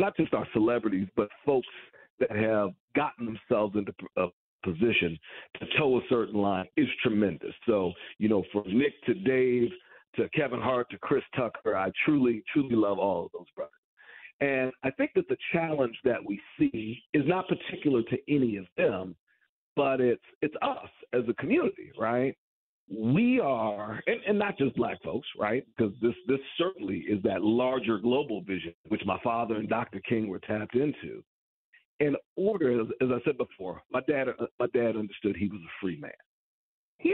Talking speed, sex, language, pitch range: 175 wpm, male, English, 100-140 Hz